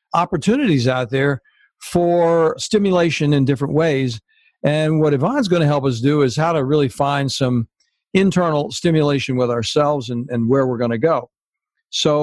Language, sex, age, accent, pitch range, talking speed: English, male, 60-79, American, 140-175 Hz, 165 wpm